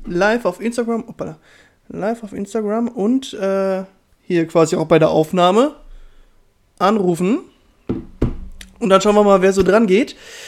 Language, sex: German, male